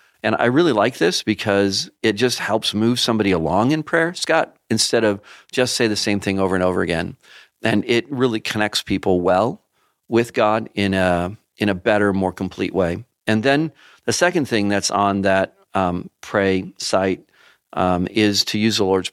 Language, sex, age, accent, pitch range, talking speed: English, male, 40-59, American, 95-110 Hz, 185 wpm